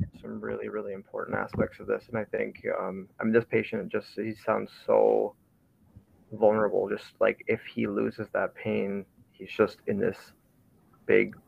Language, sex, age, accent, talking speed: English, male, 20-39, American, 165 wpm